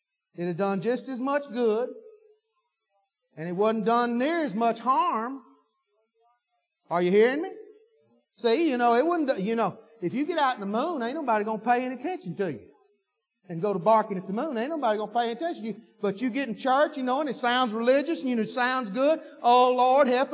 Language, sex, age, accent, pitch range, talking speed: English, male, 50-69, American, 205-300 Hz, 225 wpm